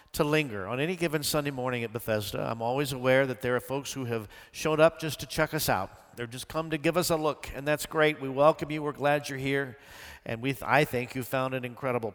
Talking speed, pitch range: 255 wpm, 125-170 Hz